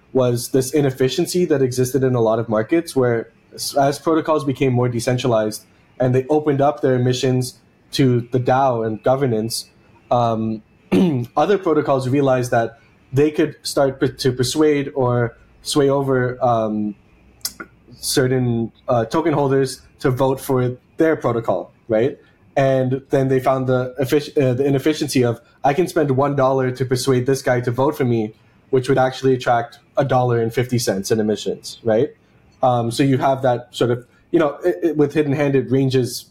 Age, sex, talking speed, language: 20-39, male, 160 wpm, English